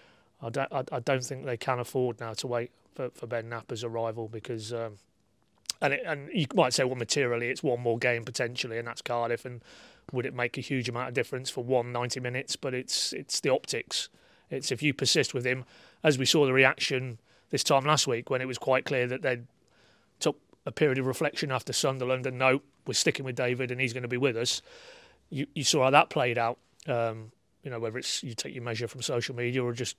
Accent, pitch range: British, 120-135 Hz